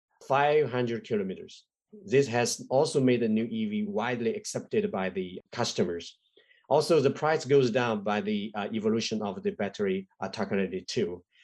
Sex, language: male, English